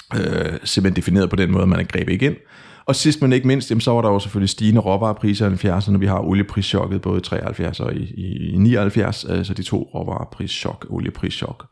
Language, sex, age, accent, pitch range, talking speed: Danish, male, 30-49, native, 95-125 Hz, 200 wpm